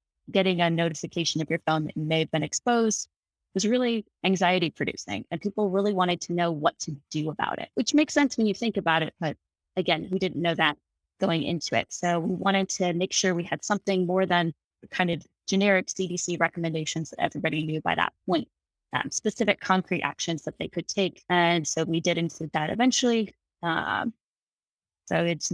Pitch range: 160-195 Hz